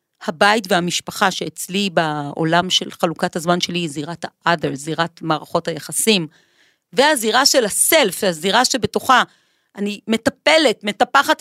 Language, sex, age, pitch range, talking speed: Hebrew, female, 40-59, 190-260 Hz, 115 wpm